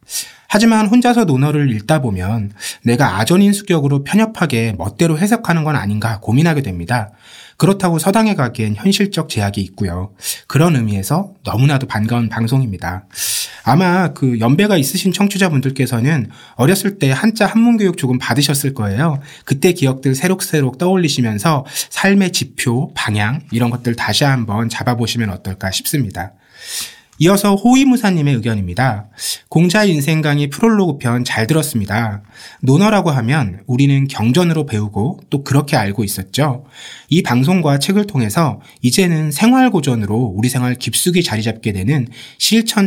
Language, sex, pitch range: Korean, male, 115-175 Hz